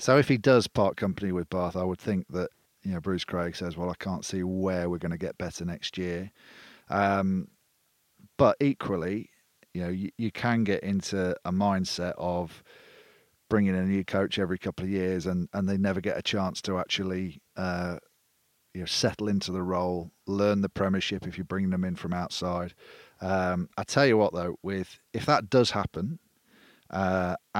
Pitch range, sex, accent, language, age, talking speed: 90-100 Hz, male, British, English, 40-59, 190 wpm